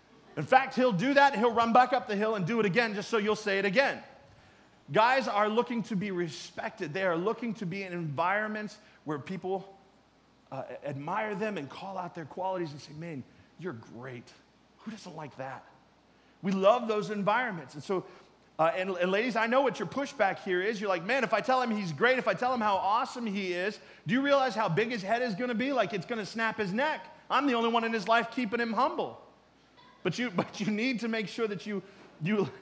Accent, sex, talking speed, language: American, male, 235 wpm, English